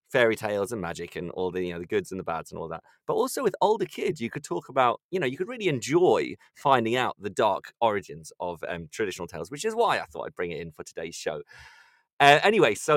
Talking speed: 260 wpm